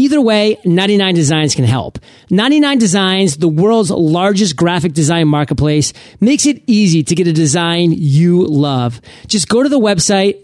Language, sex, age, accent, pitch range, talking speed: English, male, 40-59, American, 160-220 Hz, 150 wpm